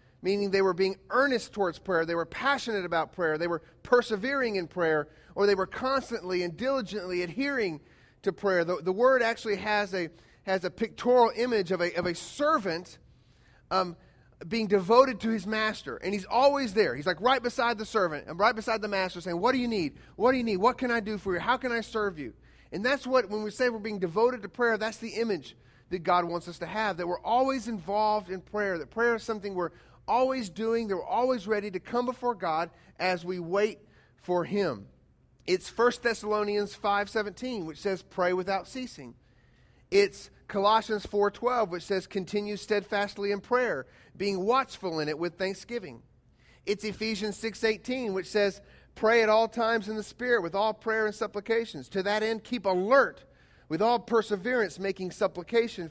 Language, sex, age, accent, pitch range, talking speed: English, male, 30-49, American, 185-230 Hz, 190 wpm